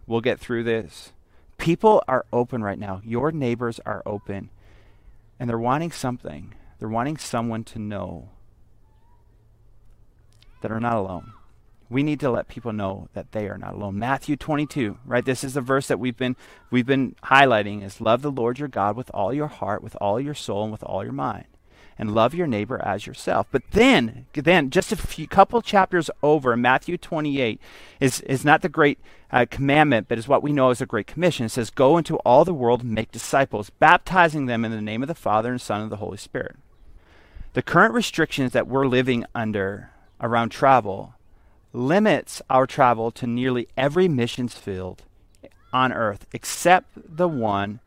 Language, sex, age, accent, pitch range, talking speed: English, male, 40-59, American, 105-135 Hz, 185 wpm